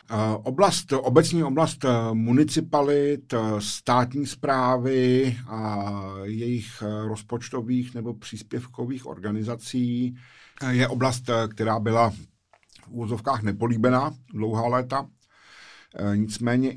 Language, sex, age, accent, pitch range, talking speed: Czech, male, 50-69, native, 105-120 Hz, 75 wpm